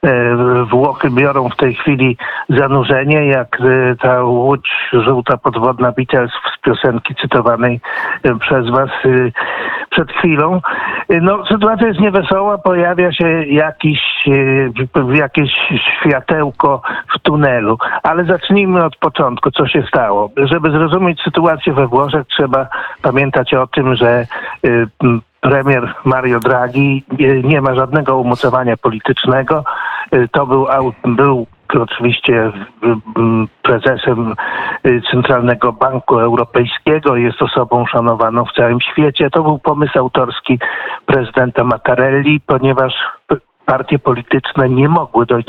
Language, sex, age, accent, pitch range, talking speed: Polish, male, 50-69, native, 125-155 Hz, 110 wpm